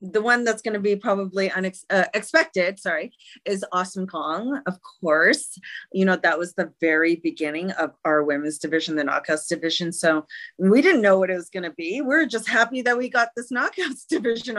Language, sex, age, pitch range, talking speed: English, female, 30-49, 165-220 Hz, 195 wpm